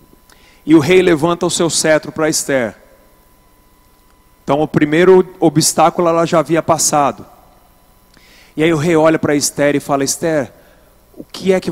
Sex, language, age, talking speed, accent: male, Portuguese, 40-59, 160 wpm, Brazilian